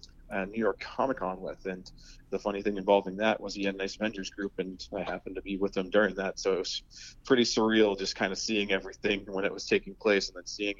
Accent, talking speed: American, 250 wpm